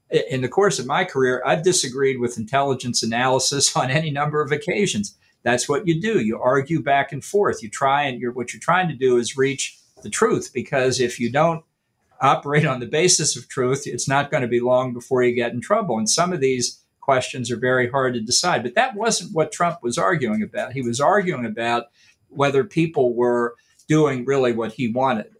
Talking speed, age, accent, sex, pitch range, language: 210 wpm, 50-69, American, male, 125-155 Hz, English